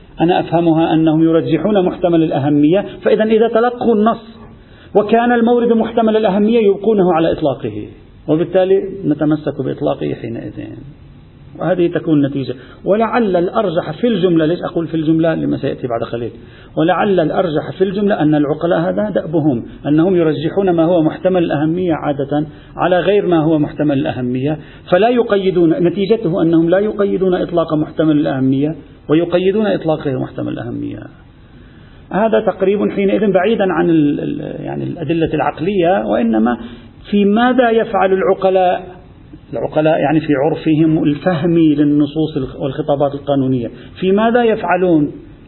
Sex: male